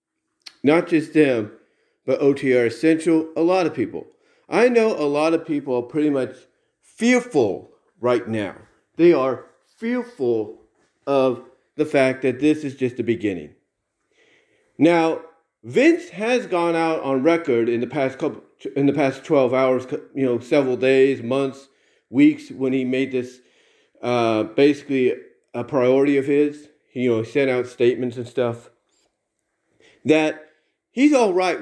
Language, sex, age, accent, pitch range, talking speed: English, male, 40-59, American, 130-175 Hz, 150 wpm